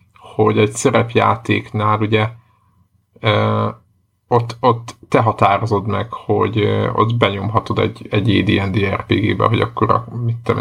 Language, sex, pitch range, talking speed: Hungarian, male, 105-115 Hz, 125 wpm